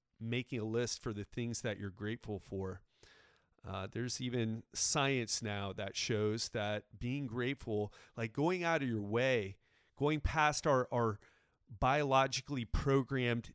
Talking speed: 140 wpm